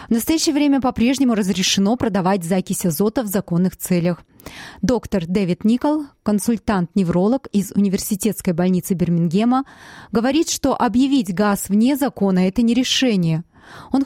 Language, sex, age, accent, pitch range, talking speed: Russian, female, 20-39, native, 185-240 Hz, 130 wpm